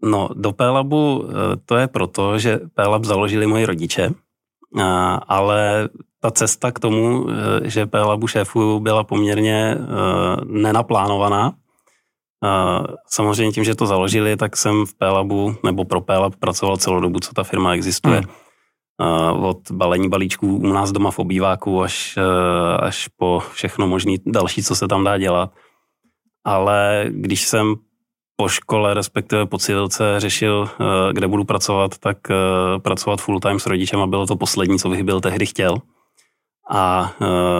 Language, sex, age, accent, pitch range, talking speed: Czech, male, 30-49, native, 95-105 Hz, 140 wpm